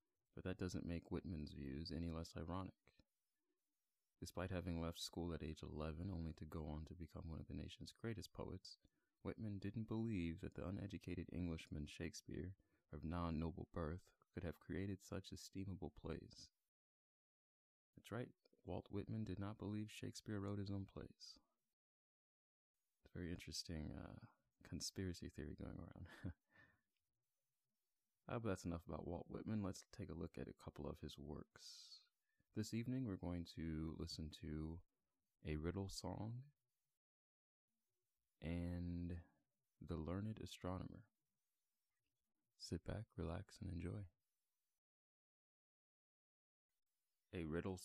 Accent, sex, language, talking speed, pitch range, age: American, male, English, 130 wpm, 80-100 Hz, 30-49